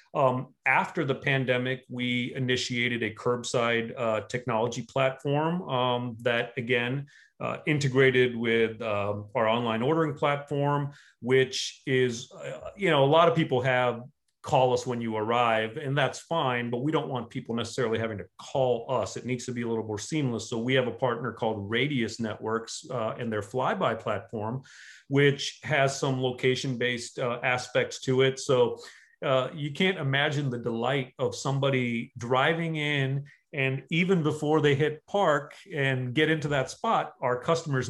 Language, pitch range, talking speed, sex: English, 120-150 Hz, 165 wpm, male